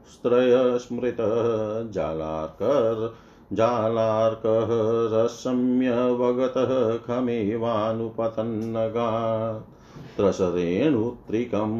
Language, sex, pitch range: Hindi, male, 110-125 Hz